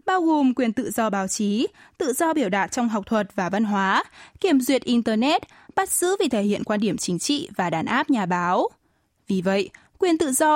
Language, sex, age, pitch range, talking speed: Vietnamese, female, 10-29, 205-285 Hz, 220 wpm